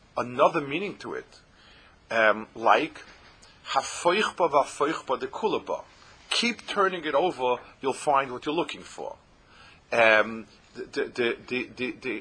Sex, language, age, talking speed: male, English, 40-59, 90 wpm